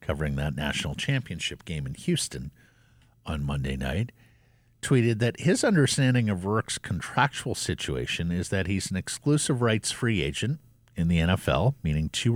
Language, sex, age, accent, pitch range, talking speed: English, male, 50-69, American, 85-120 Hz, 145 wpm